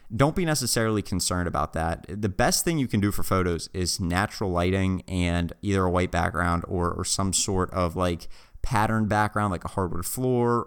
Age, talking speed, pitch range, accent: 30-49, 190 wpm, 85-100 Hz, American